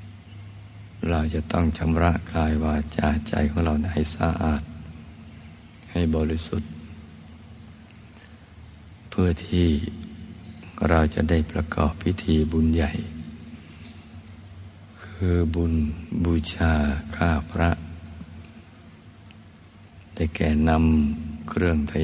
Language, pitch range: Thai, 80-100 Hz